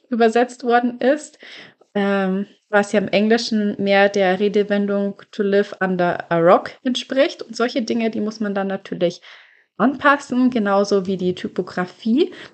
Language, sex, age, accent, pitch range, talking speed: German, female, 20-39, German, 200-235 Hz, 145 wpm